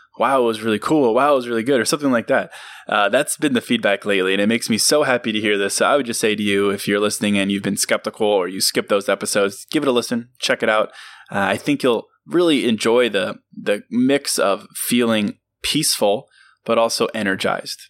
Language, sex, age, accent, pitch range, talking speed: English, male, 20-39, American, 100-125 Hz, 235 wpm